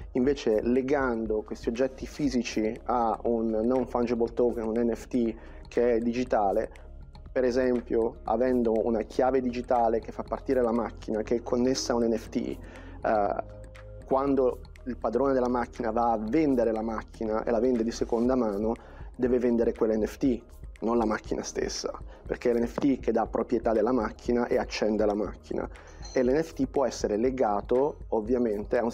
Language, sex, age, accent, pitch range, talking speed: Italian, male, 30-49, native, 110-125 Hz, 160 wpm